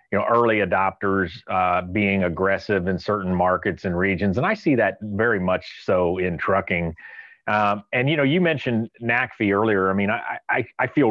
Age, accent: 40-59, American